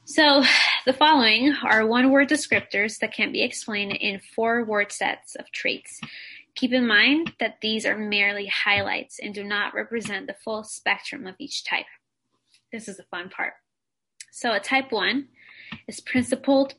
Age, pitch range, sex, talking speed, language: 10-29, 205-280 Hz, female, 160 wpm, English